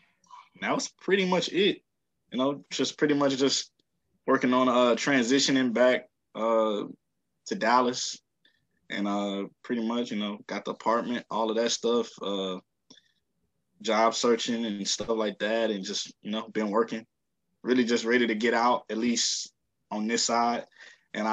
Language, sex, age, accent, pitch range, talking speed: English, male, 20-39, American, 105-120 Hz, 160 wpm